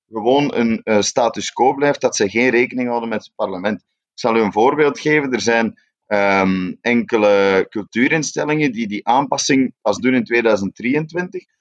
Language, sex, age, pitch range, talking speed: Dutch, male, 30-49, 105-135 Hz, 165 wpm